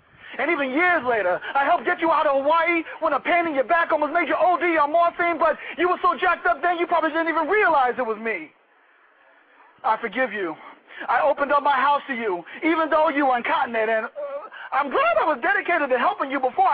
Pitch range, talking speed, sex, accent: 275-350 Hz, 230 wpm, male, American